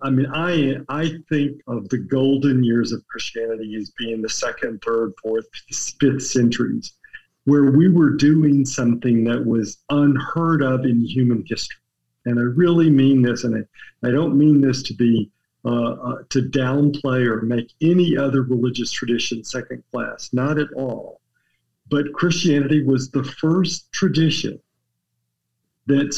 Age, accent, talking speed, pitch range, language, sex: 50-69, American, 150 wpm, 120-145 Hz, English, male